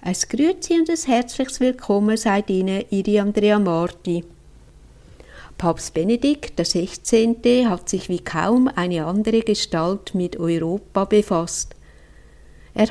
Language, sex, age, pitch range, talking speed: German, female, 60-79, 180-220 Hz, 115 wpm